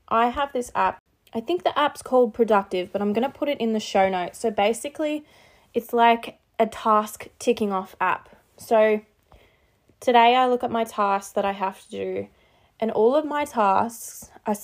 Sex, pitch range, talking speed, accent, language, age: female, 190-235 Hz, 195 wpm, Australian, English, 20-39